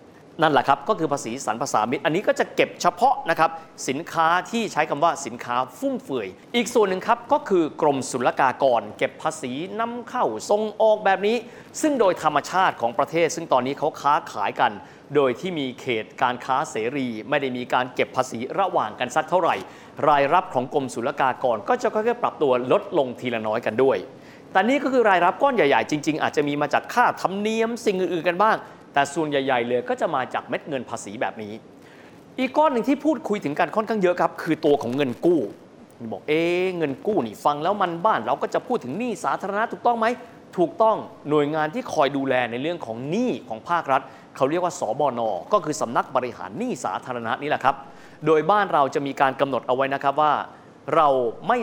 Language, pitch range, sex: Thai, 140-215 Hz, male